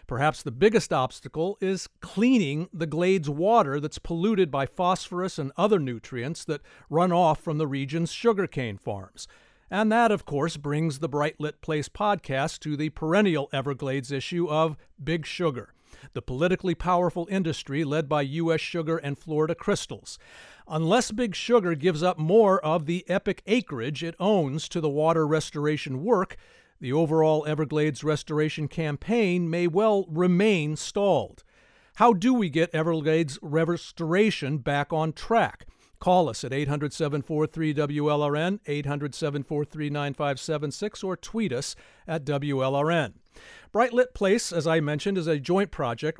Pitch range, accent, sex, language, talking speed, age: 150-185 Hz, American, male, English, 140 wpm, 50-69